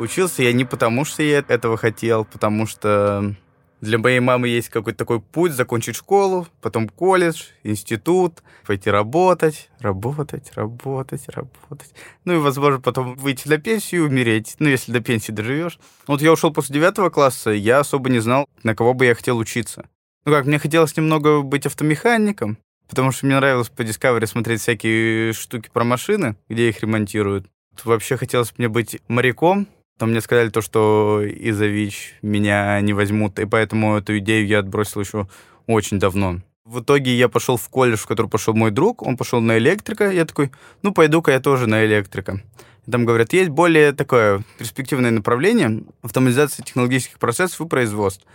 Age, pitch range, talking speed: 20-39, 110-145 Hz, 170 wpm